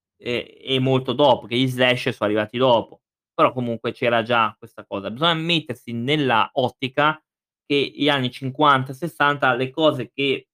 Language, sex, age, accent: Italian, male, 20-39, native